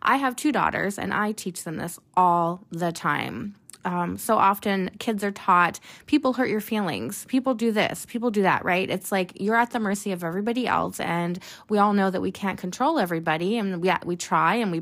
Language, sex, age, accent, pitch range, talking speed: English, female, 20-39, American, 175-215 Hz, 215 wpm